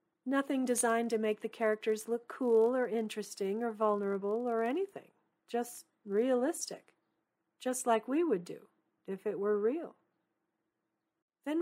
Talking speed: 135 wpm